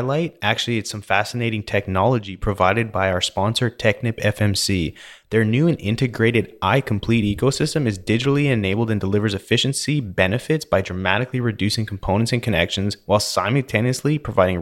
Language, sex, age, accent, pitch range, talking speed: English, male, 20-39, American, 95-115 Hz, 135 wpm